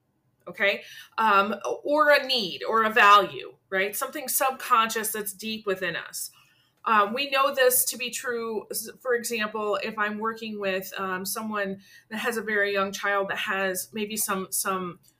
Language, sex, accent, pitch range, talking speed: English, female, American, 200-265 Hz, 160 wpm